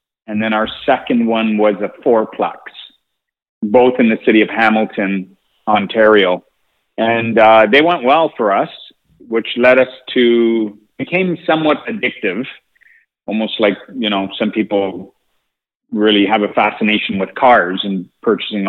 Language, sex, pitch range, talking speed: English, male, 100-120 Hz, 140 wpm